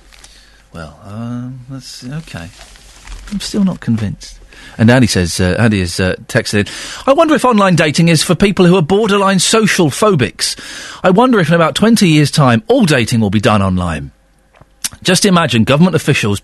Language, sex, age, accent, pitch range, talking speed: English, male, 40-59, British, 125-195 Hz, 175 wpm